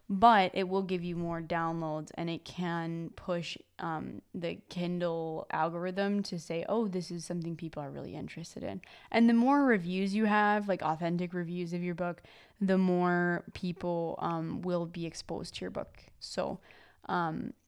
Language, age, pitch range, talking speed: English, 20-39, 175-205 Hz, 170 wpm